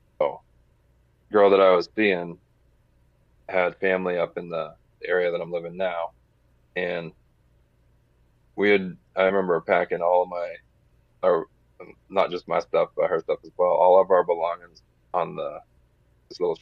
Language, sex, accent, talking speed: English, male, American, 155 wpm